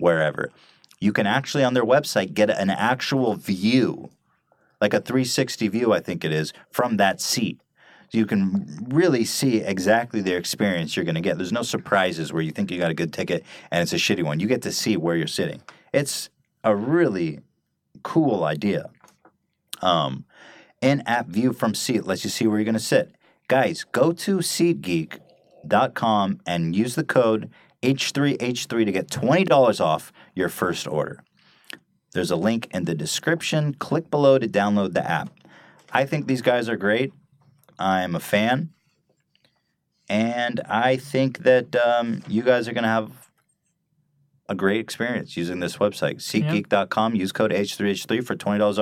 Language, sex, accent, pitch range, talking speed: English, male, American, 100-140 Hz, 165 wpm